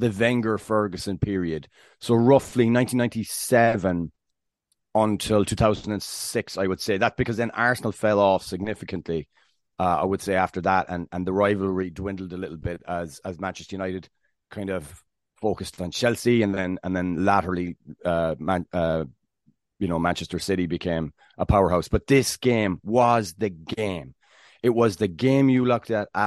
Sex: male